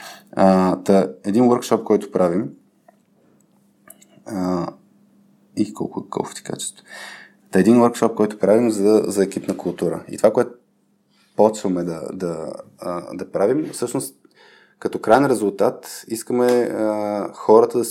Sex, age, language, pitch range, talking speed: male, 20-39, Bulgarian, 95-110 Hz, 115 wpm